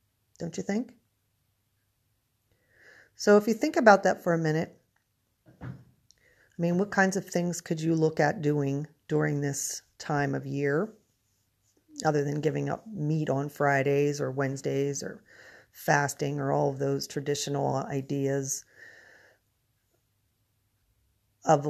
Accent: American